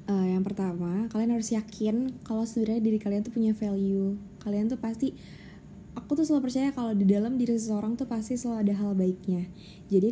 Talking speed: 190 wpm